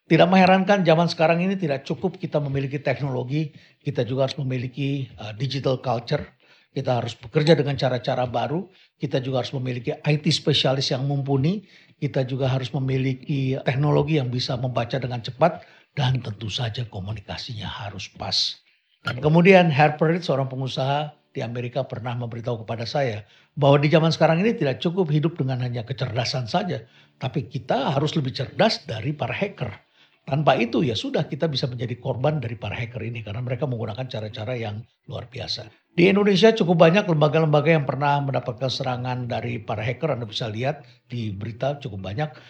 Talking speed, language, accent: 165 wpm, Indonesian, native